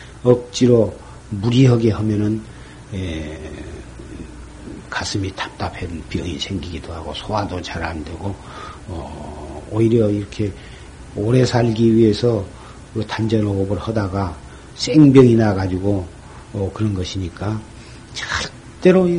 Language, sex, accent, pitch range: Korean, male, native, 100-140 Hz